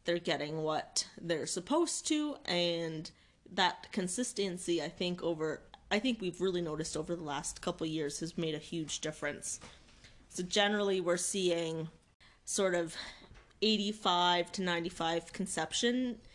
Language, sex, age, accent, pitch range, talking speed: English, female, 20-39, American, 165-200 Hz, 140 wpm